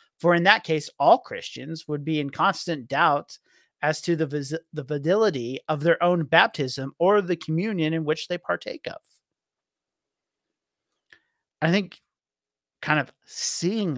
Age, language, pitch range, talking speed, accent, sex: 30-49, English, 135-175 Hz, 145 wpm, American, male